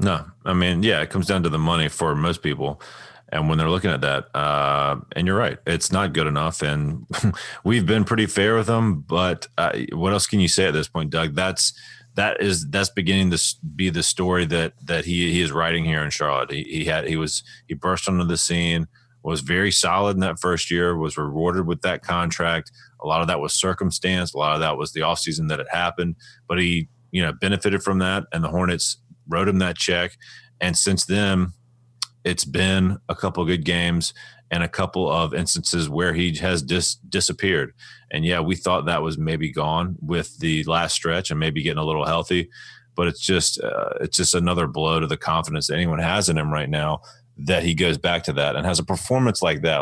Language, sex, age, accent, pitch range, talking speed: English, male, 30-49, American, 80-100 Hz, 220 wpm